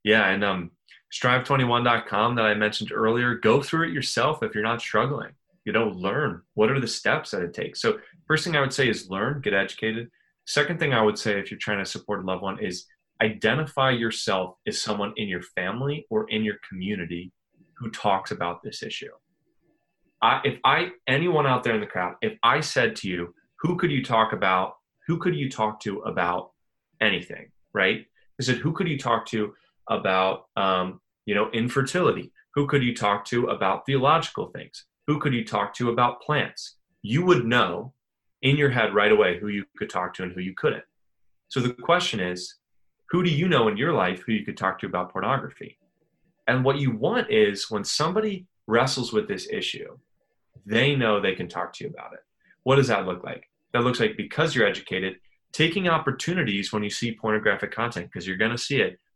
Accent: American